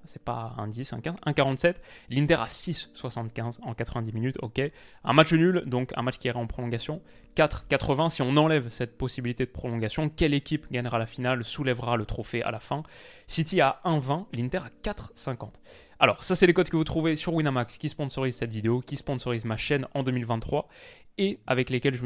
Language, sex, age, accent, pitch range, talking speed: French, male, 20-39, French, 120-150 Hz, 200 wpm